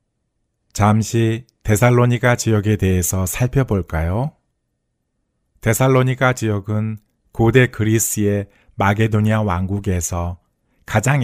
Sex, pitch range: male, 100-120 Hz